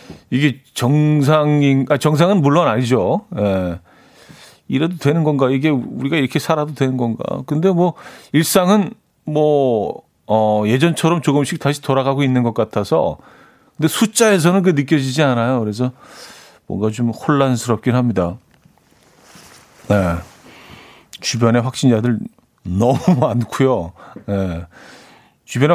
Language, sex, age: Korean, male, 40-59